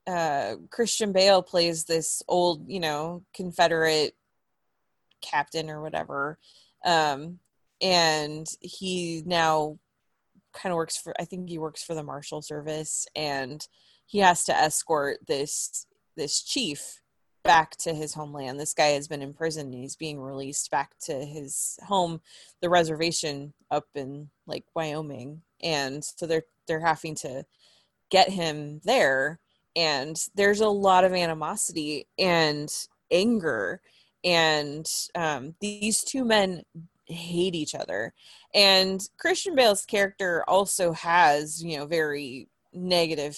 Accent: American